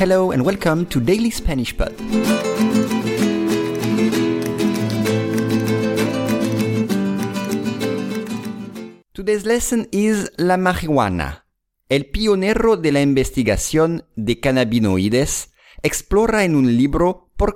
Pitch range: 110-180 Hz